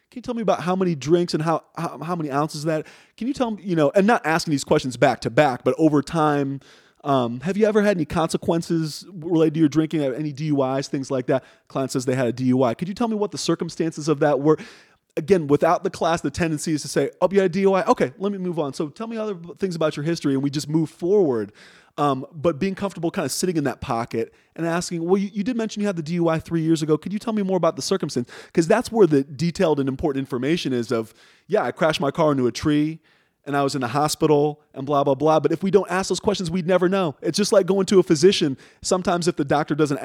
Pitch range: 140-190 Hz